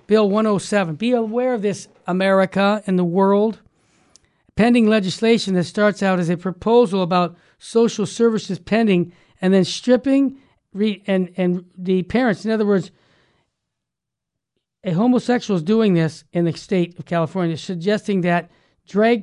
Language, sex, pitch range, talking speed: English, male, 175-225 Hz, 140 wpm